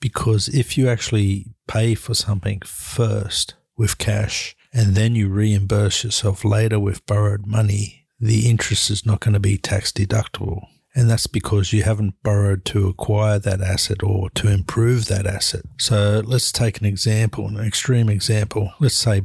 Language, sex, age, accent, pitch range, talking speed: English, male, 50-69, Australian, 100-110 Hz, 165 wpm